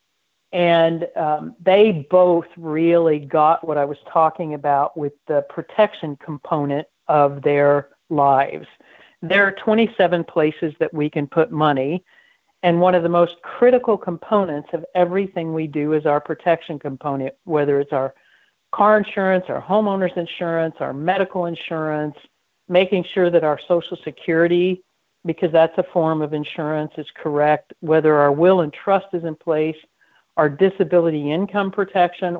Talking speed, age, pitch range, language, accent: 145 wpm, 60-79, 155-185 Hz, English, American